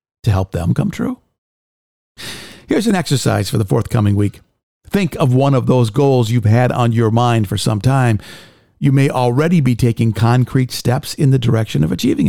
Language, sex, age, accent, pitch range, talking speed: English, male, 50-69, American, 110-150 Hz, 185 wpm